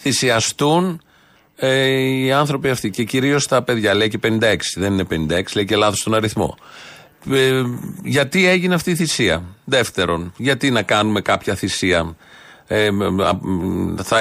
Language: Greek